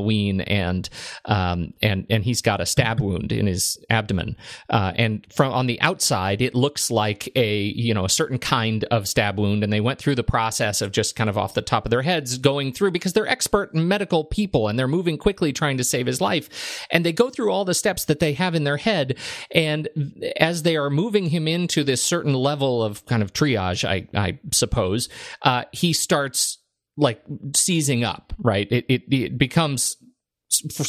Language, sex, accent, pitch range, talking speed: English, male, American, 115-160 Hz, 205 wpm